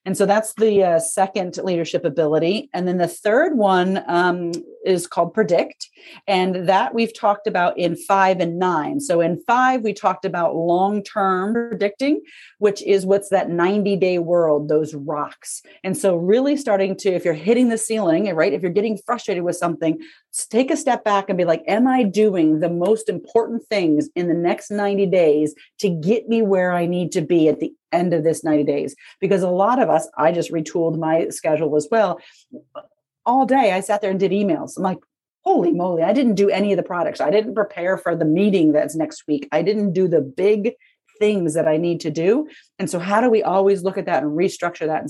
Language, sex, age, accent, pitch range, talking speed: English, female, 40-59, American, 170-220 Hz, 210 wpm